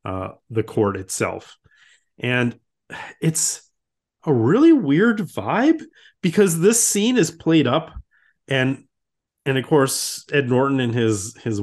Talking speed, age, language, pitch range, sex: 130 wpm, 30-49, English, 110-145 Hz, male